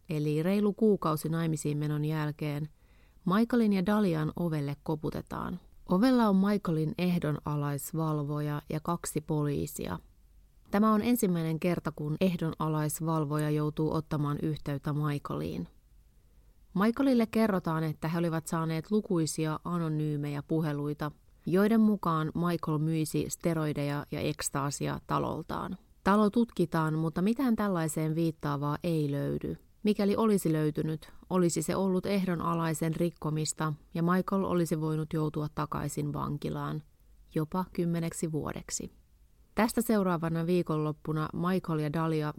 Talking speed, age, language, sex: 110 wpm, 30-49, Finnish, female